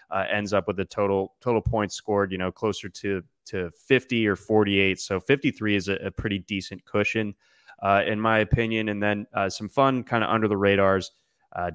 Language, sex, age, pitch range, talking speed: English, male, 20-39, 100-120 Hz, 205 wpm